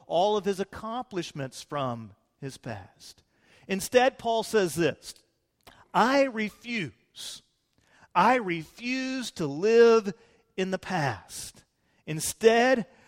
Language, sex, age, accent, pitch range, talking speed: English, male, 40-59, American, 160-220 Hz, 95 wpm